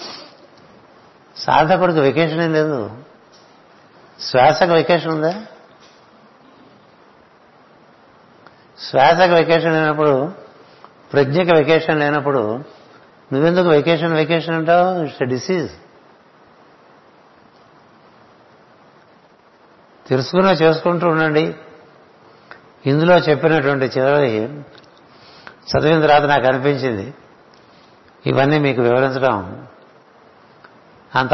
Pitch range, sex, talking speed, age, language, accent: 120-150 Hz, male, 65 wpm, 60-79, Telugu, native